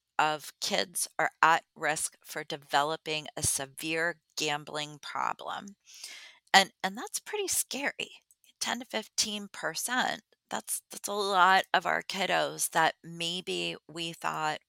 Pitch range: 155-190 Hz